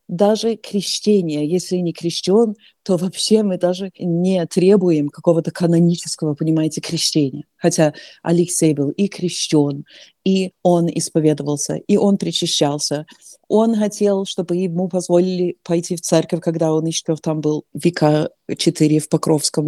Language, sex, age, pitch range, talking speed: Russian, female, 30-49, 170-205 Hz, 130 wpm